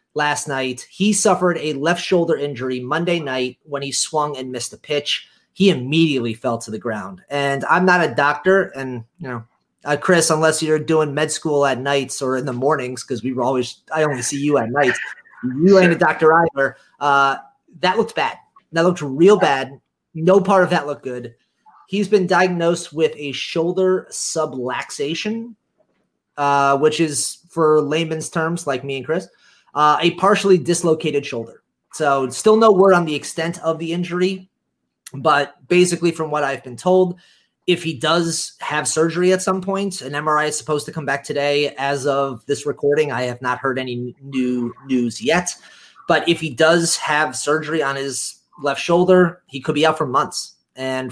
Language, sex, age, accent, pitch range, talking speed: English, male, 30-49, American, 135-170 Hz, 185 wpm